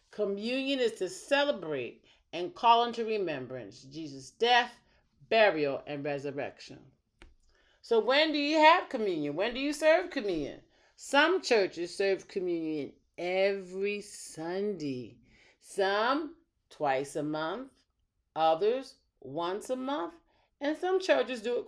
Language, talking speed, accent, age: English, 120 wpm, American, 40-59